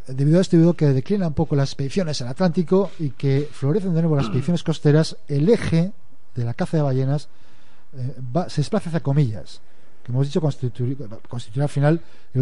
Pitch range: 130-165 Hz